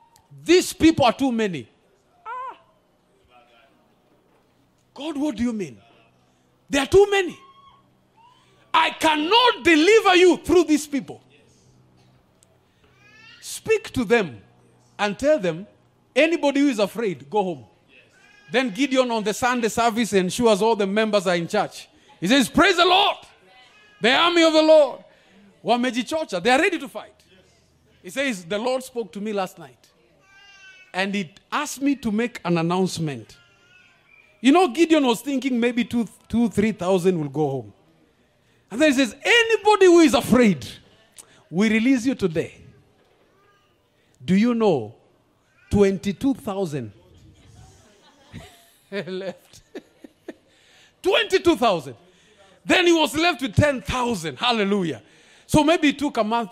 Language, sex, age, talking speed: English, male, 50-69, 130 wpm